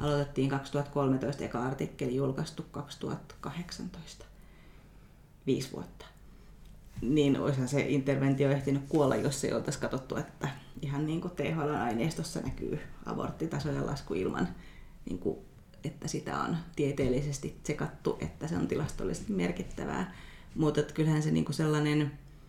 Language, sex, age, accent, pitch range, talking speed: Finnish, female, 30-49, native, 120-150 Hz, 125 wpm